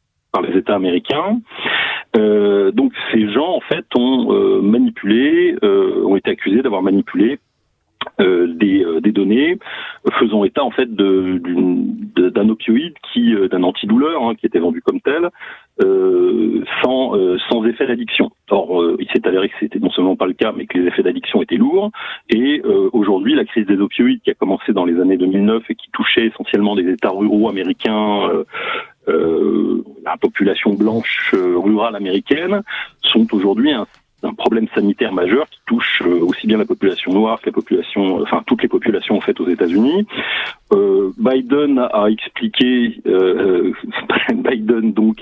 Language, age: French, 40-59